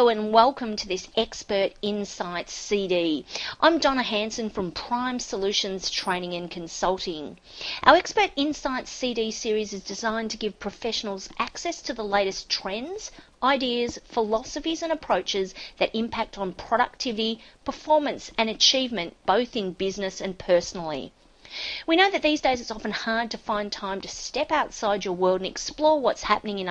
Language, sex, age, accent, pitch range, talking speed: English, female, 40-59, Australian, 195-270 Hz, 155 wpm